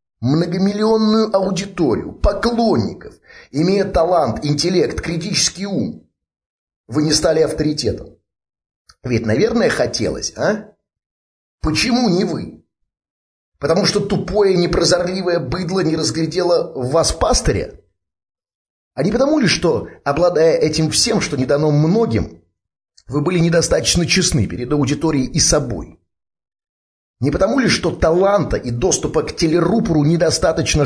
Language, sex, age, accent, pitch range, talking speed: Russian, male, 30-49, native, 100-165 Hz, 115 wpm